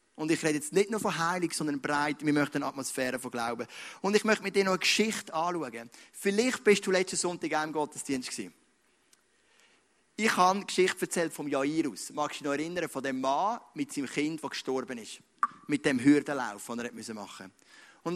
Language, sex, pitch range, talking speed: German, male, 135-185 Hz, 205 wpm